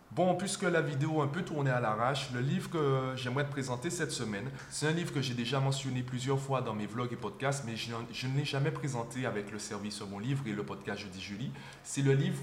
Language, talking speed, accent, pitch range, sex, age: French, 255 wpm, French, 120-155 Hz, male, 20-39